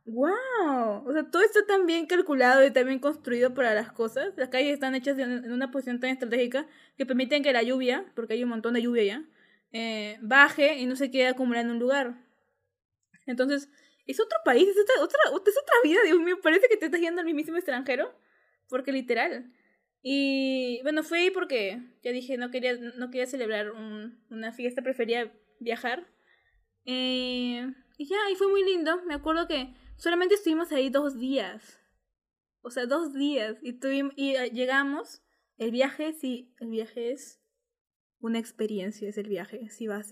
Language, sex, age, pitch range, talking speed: Spanish, female, 10-29, 235-305 Hz, 180 wpm